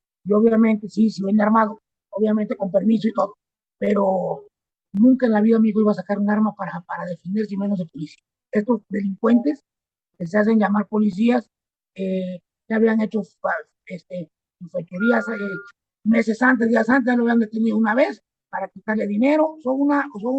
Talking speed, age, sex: 180 wpm, 50-69, male